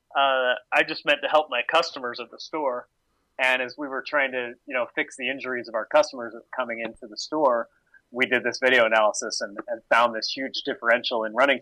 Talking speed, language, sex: 215 wpm, English, male